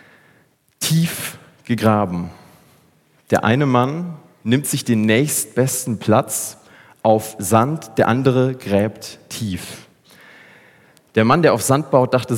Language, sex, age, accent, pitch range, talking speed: German, male, 30-49, German, 110-130 Hz, 110 wpm